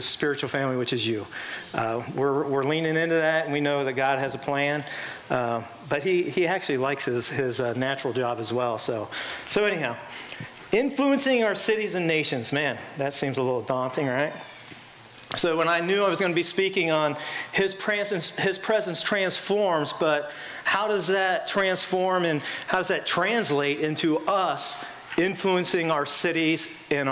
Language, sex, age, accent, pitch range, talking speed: English, male, 40-59, American, 145-200 Hz, 175 wpm